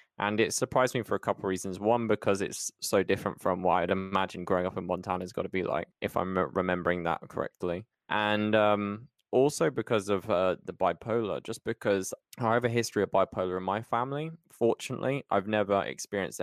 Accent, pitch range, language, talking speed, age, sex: British, 95-110 Hz, English, 195 wpm, 20-39, male